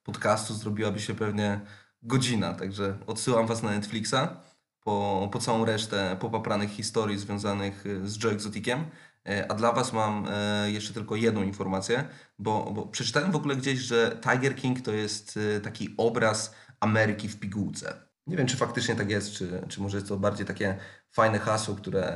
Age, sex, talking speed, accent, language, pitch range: 20-39, male, 160 wpm, native, Polish, 100-115 Hz